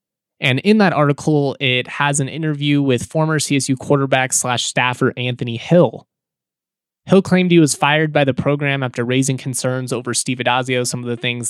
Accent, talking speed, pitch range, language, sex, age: American, 175 wpm, 125-150 Hz, English, male, 20-39